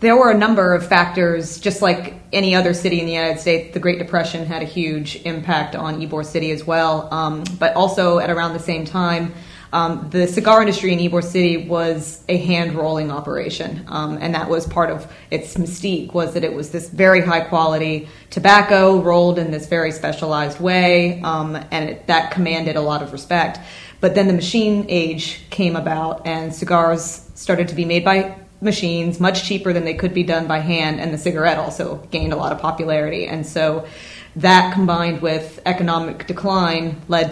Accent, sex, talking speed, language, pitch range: American, female, 190 wpm, English, 160-180 Hz